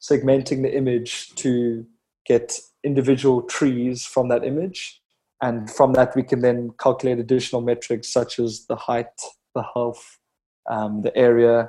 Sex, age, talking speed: male, 20-39, 145 wpm